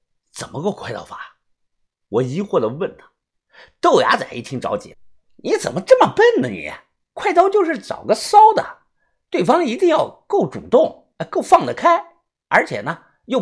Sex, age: male, 50-69